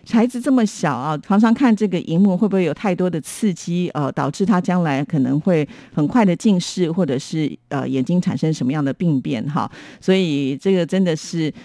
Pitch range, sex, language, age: 150-200 Hz, female, Chinese, 50-69